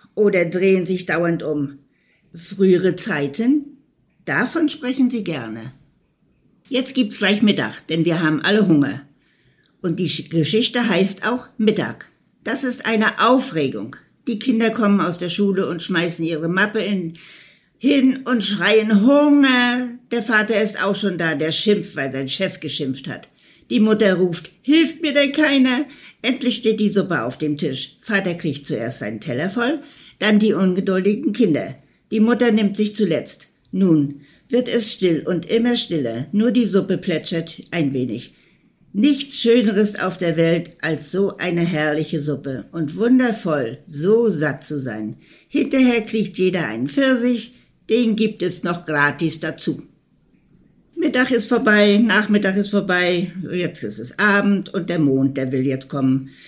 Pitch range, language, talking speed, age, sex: 165-230 Hz, German, 150 wpm, 60-79, female